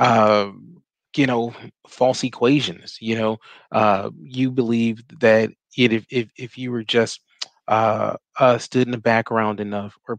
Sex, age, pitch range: male, 30-49, 110-130 Hz